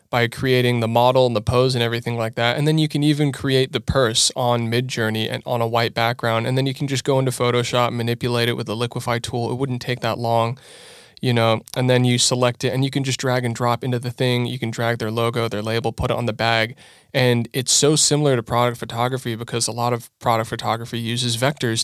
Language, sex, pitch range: English, male, 115-135 Hz